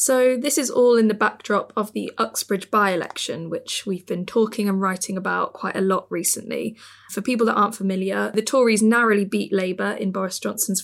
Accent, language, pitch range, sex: British, English, 190-215 Hz, female